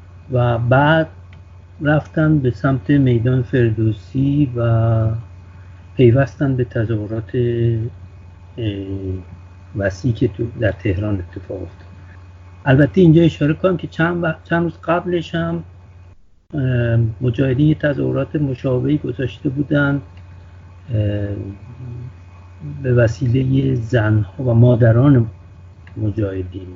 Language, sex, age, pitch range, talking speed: English, male, 60-79, 95-135 Hz, 85 wpm